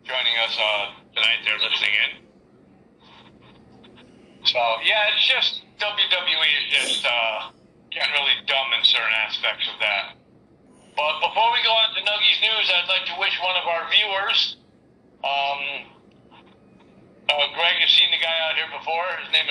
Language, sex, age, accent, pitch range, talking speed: English, male, 50-69, American, 140-185 Hz, 155 wpm